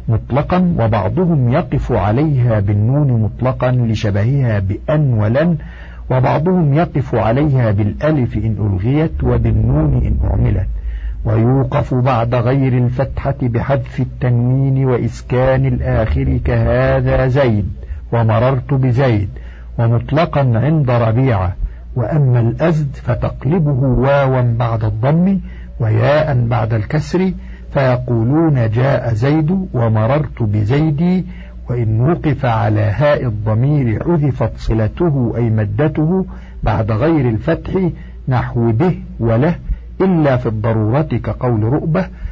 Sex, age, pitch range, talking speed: male, 50-69, 110-145 Hz, 95 wpm